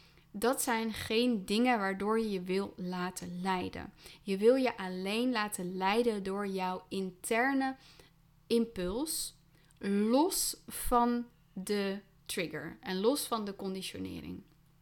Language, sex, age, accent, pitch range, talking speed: Dutch, female, 20-39, Dutch, 180-215 Hz, 115 wpm